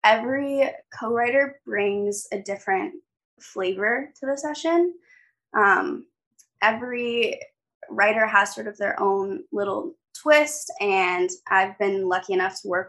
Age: 20-39